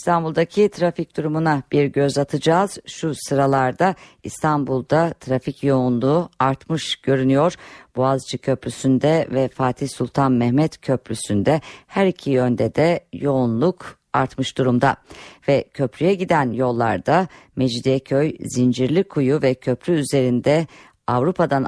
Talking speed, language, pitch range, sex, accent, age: 100 wpm, Turkish, 125-155 Hz, female, native, 50-69